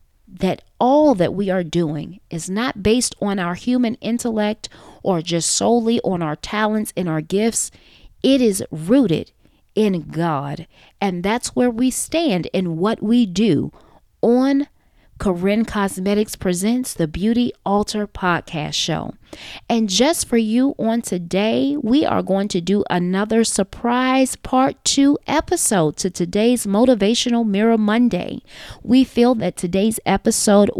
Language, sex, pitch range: English, female, 185-245 Hz